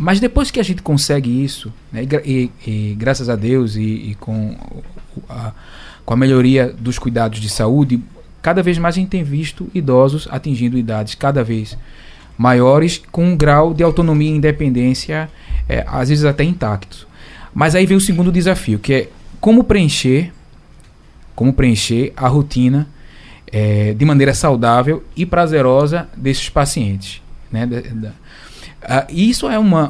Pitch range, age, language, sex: 120-160 Hz, 20-39, Portuguese, male